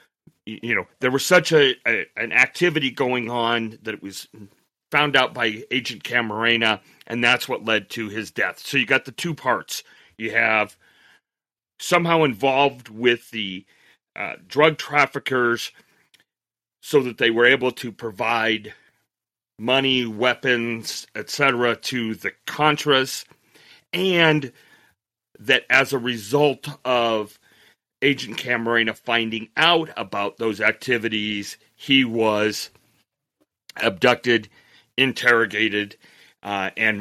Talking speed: 120 wpm